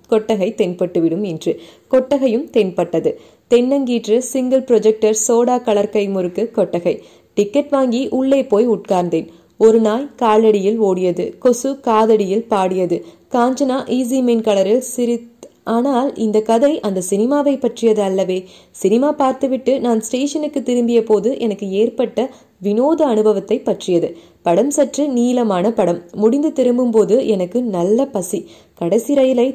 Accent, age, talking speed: native, 20-39, 105 wpm